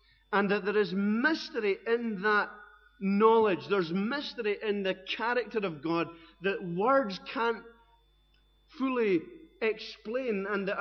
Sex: male